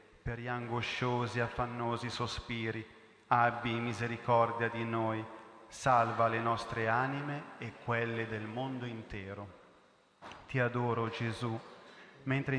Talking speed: 105 wpm